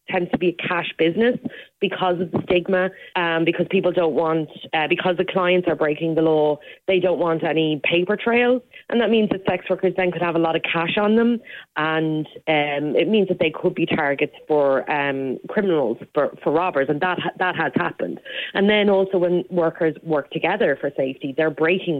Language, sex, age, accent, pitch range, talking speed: English, female, 30-49, Irish, 150-185 Hz, 205 wpm